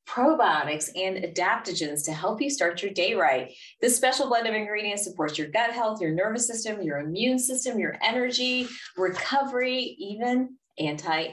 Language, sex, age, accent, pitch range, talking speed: English, female, 30-49, American, 160-215 Hz, 160 wpm